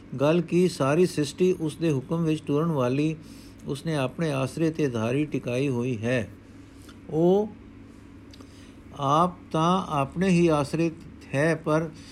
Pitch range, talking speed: 125-165 Hz, 115 wpm